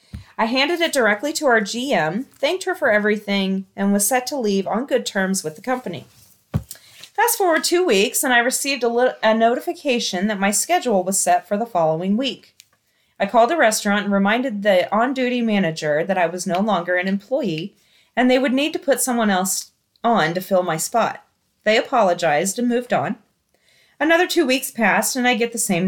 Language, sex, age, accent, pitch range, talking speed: English, female, 30-49, American, 200-295 Hz, 195 wpm